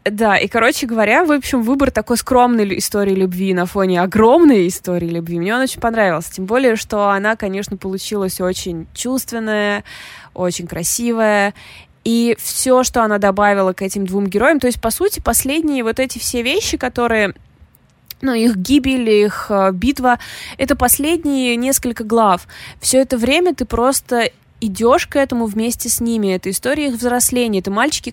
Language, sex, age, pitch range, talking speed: Russian, female, 20-39, 195-245 Hz, 160 wpm